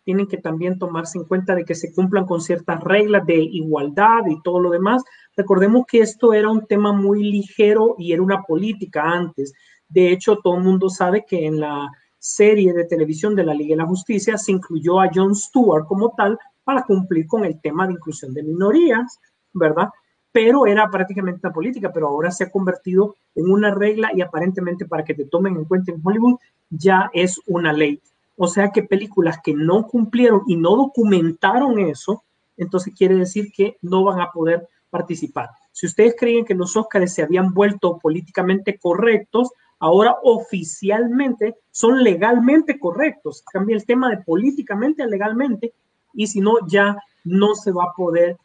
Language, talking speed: Spanish, 180 wpm